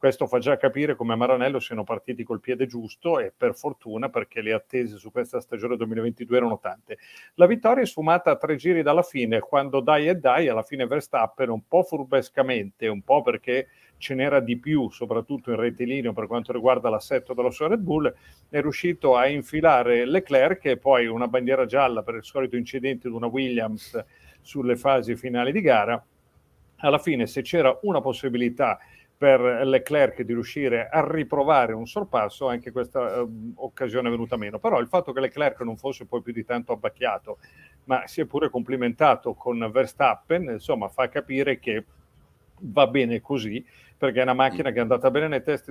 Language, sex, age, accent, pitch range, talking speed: Italian, male, 40-59, native, 120-140 Hz, 185 wpm